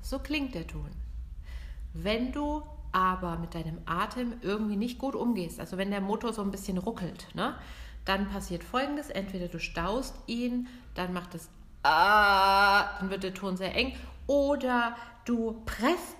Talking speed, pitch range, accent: 155 wpm, 165-220 Hz, German